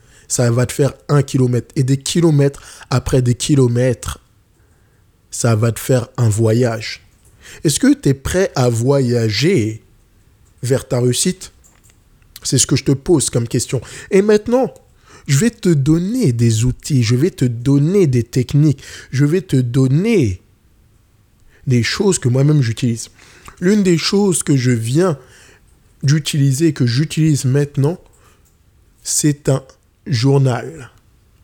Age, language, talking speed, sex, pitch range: 20-39, French, 135 wpm, male, 120-155 Hz